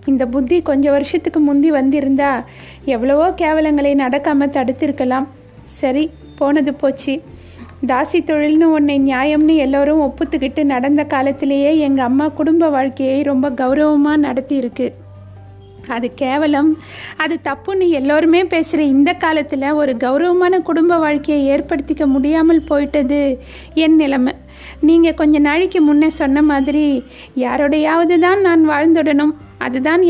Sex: female